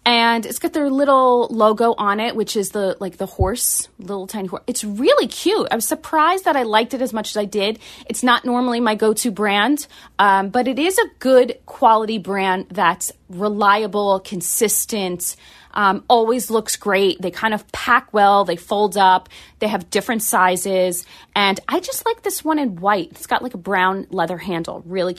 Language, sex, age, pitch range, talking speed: English, female, 30-49, 190-250 Hz, 195 wpm